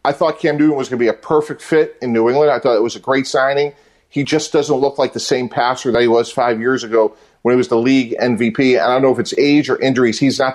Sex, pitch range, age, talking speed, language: male, 125-150 Hz, 40-59, 295 wpm, English